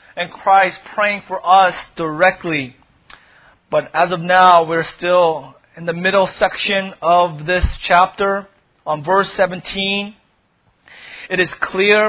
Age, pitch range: 30-49, 185-220 Hz